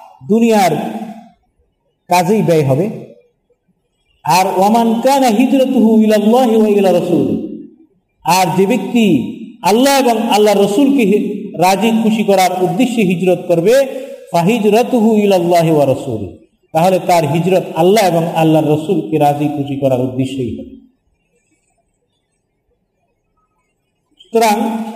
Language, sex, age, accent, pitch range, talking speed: Bengali, male, 50-69, native, 175-230 Hz, 75 wpm